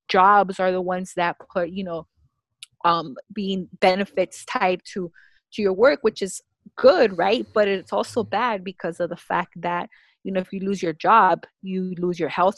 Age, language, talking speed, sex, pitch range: 20-39, English, 190 wpm, female, 175-205 Hz